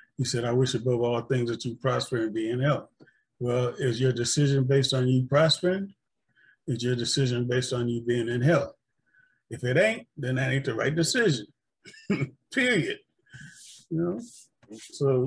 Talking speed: 175 wpm